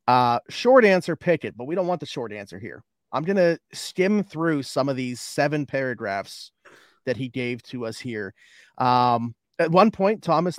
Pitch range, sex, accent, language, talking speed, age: 120-140 Hz, male, American, English, 180 wpm, 30-49